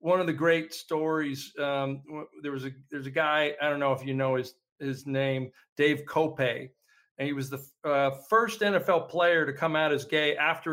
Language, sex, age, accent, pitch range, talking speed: English, male, 40-59, American, 145-185 Hz, 215 wpm